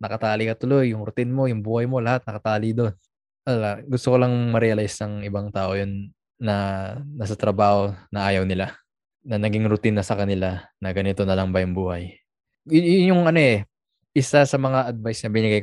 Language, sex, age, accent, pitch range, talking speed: Filipino, male, 20-39, native, 100-115 Hz, 195 wpm